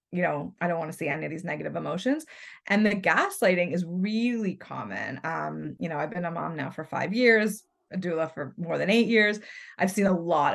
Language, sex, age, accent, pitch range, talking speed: English, female, 20-39, American, 170-210 Hz, 230 wpm